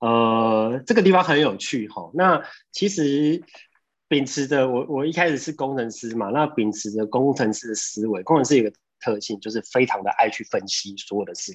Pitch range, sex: 115-160 Hz, male